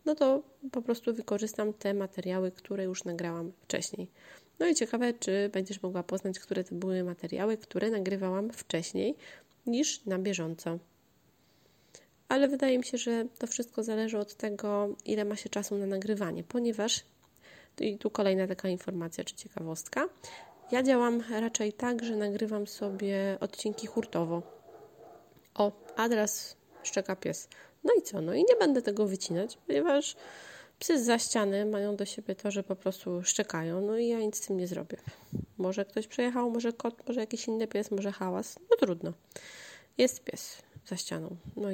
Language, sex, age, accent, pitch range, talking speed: Polish, female, 30-49, native, 185-225 Hz, 160 wpm